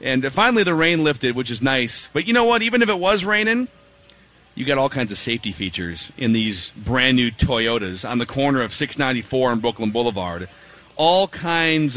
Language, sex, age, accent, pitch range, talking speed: English, male, 30-49, American, 125-170 Hz, 205 wpm